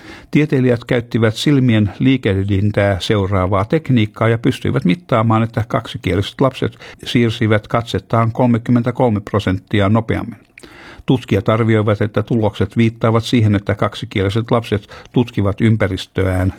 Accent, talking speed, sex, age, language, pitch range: native, 100 wpm, male, 60-79, Finnish, 100-120 Hz